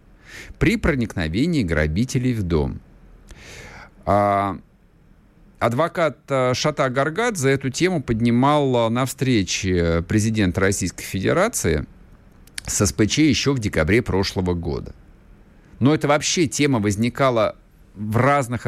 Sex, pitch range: male, 90-125 Hz